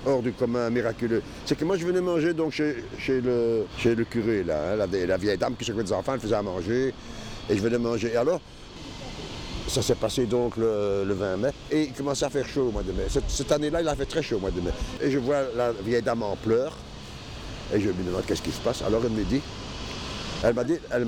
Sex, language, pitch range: male, French, 115-145 Hz